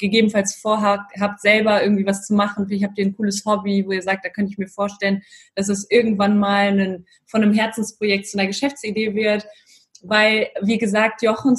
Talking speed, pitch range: 195 wpm, 205-250 Hz